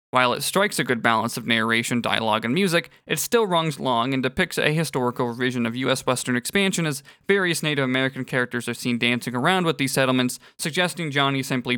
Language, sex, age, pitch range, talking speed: English, male, 20-39, 125-160 Hz, 200 wpm